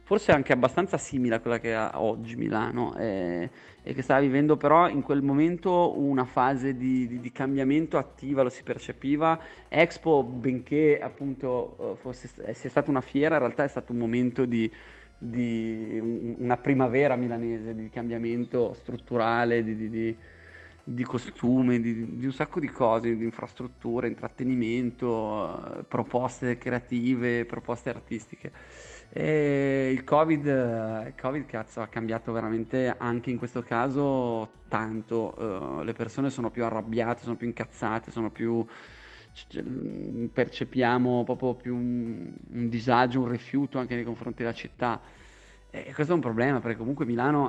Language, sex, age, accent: Italian, male, 20-39, native